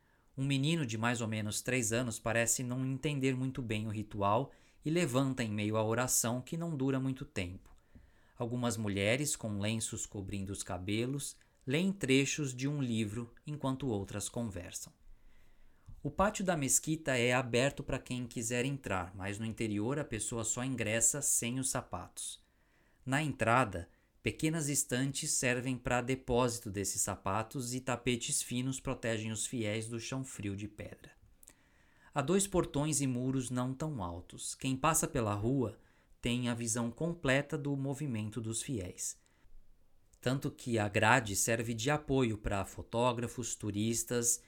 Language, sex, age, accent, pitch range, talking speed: Portuguese, male, 20-39, Brazilian, 110-135 Hz, 150 wpm